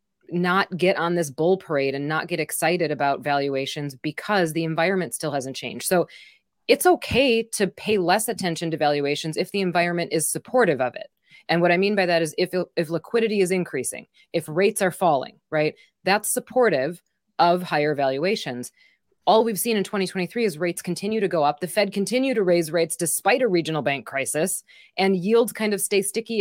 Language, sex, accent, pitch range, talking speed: English, female, American, 150-195 Hz, 190 wpm